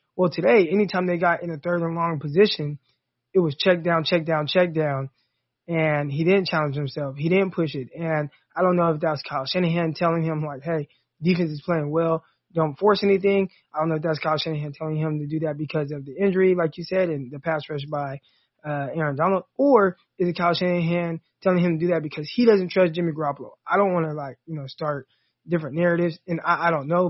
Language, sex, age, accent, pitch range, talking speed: English, male, 20-39, American, 150-180 Hz, 235 wpm